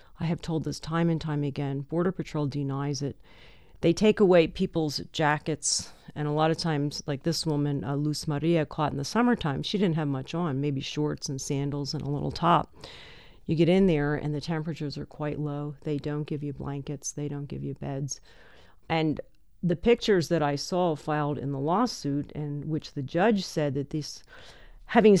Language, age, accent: English, 40-59, American